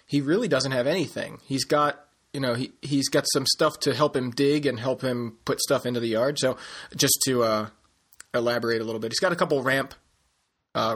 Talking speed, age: 220 wpm, 30-49